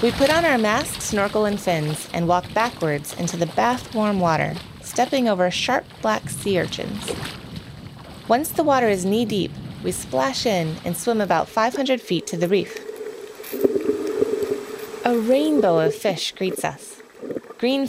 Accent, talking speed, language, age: American, 150 wpm, English, 20-39